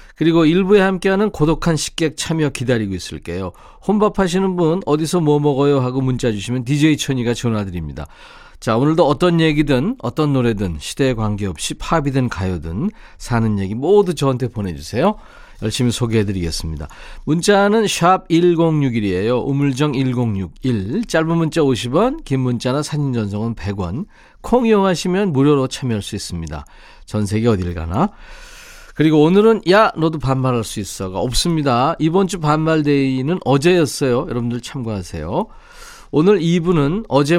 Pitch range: 110-180 Hz